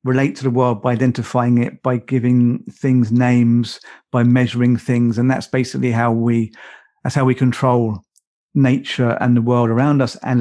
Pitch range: 120-130 Hz